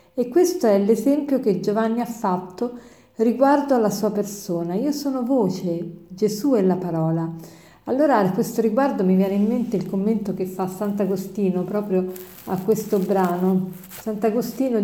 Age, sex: 50-69, female